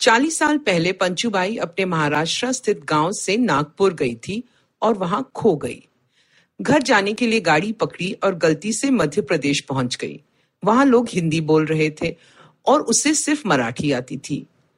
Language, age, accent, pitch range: Hindi, 50-69, native, 150-230 Hz